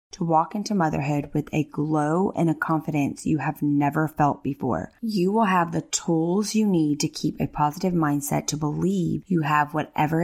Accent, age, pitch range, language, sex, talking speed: American, 20-39, 150-175 Hz, English, female, 190 wpm